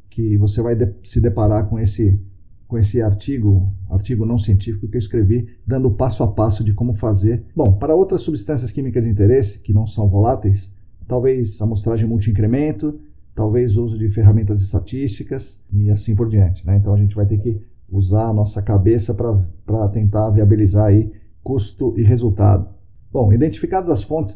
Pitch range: 100-130 Hz